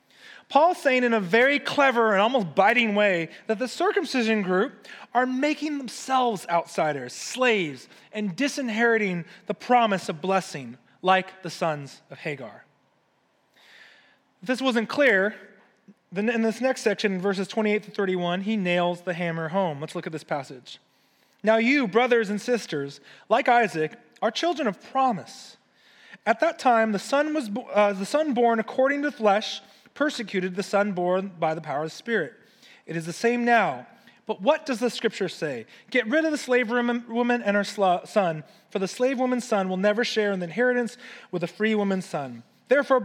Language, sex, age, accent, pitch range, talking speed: English, male, 30-49, American, 190-250 Hz, 175 wpm